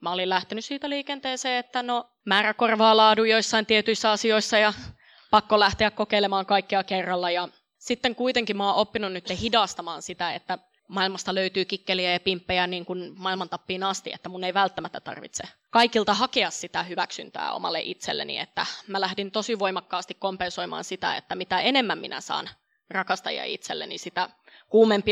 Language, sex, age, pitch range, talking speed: Finnish, female, 20-39, 185-215 Hz, 155 wpm